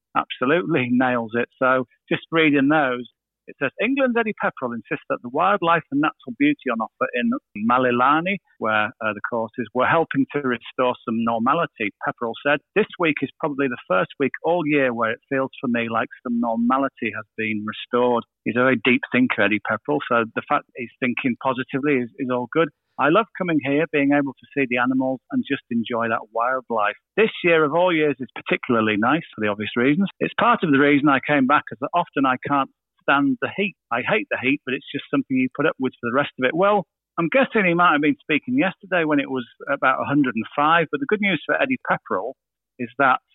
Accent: British